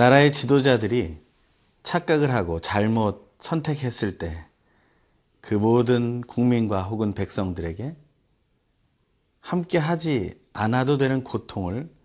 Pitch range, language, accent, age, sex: 95-125 Hz, Korean, native, 40-59, male